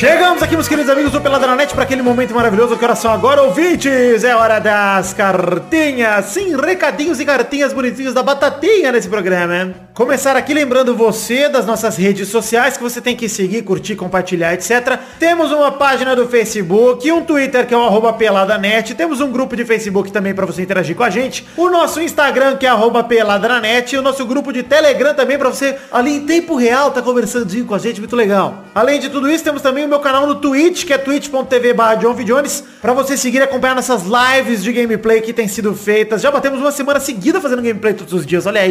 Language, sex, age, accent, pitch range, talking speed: Portuguese, male, 30-49, Brazilian, 215-275 Hz, 215 wpm